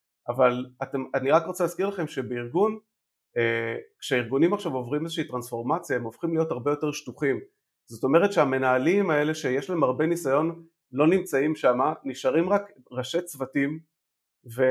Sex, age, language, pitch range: male, 30-49, Hebrew, 130-170 Hz